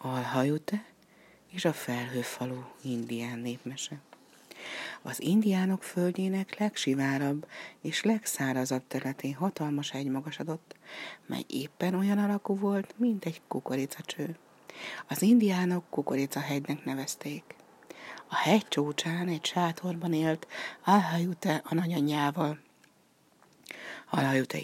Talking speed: 90 wpm